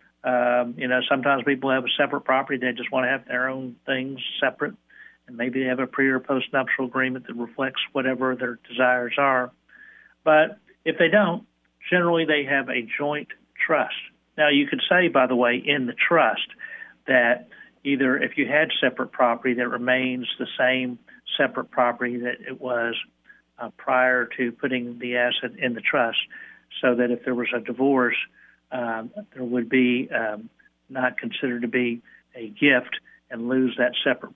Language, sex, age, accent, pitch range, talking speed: English, male, 60-79, American, 120-135 Hz, 175 wpm